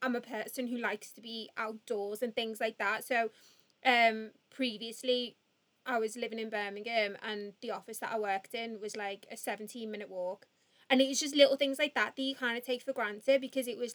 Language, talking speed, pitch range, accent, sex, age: English, 220 wpm, 205-250 Hz, British, female, 20-39